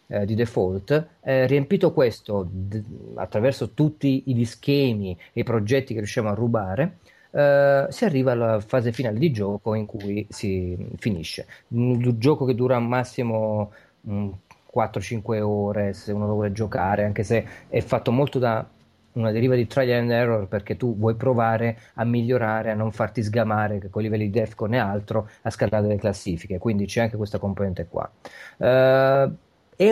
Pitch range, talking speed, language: 110-140 Hz, 170 wpm, Italian